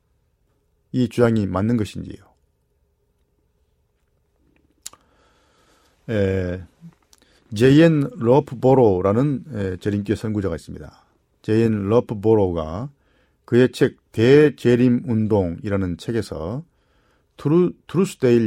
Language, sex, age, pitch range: Korean, male, 50-69, 95-130 Hz